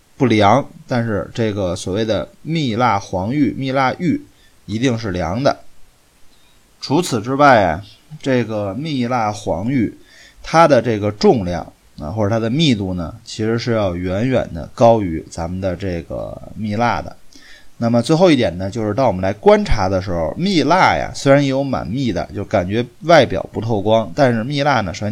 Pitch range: 95-125 Hz